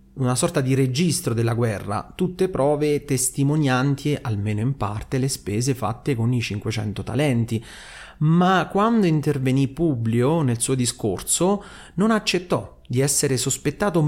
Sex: male